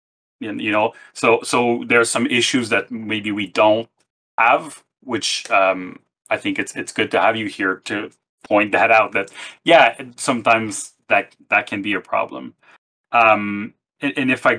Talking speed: 175 wpm